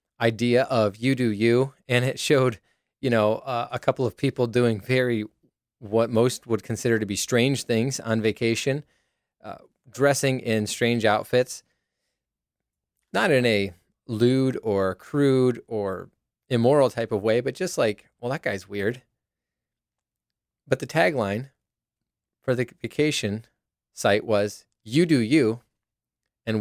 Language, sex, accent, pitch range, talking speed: English, male, American, 105-130 Hz, 140 wpm